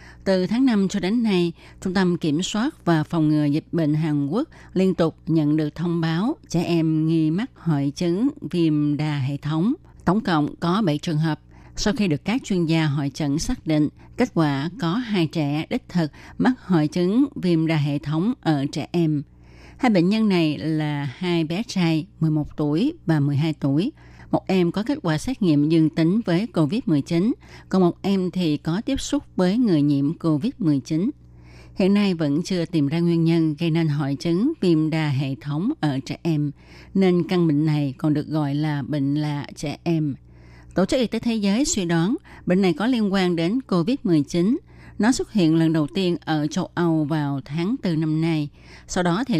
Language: Vietnamese